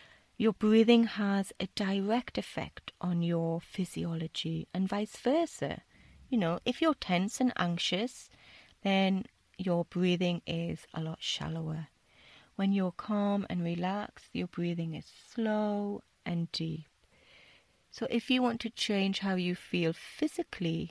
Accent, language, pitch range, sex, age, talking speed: British, English, 170-220 Hz, female, 30-49, 135 wpm